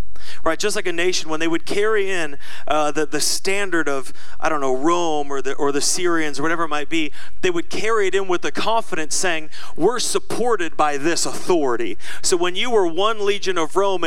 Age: 30-49